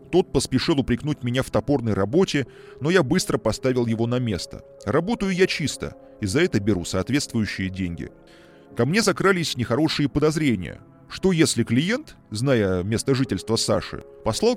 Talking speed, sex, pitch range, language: 150 wpm, male, 105-150 Hz, Russian